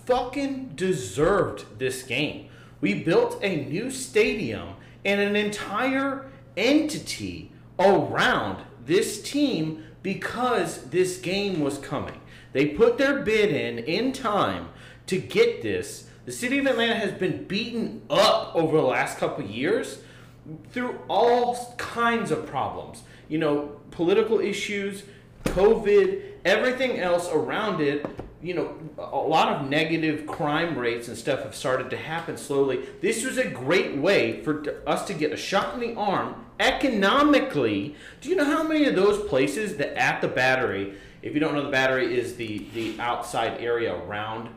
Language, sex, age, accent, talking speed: English, male, 30-49, American, 150 wpm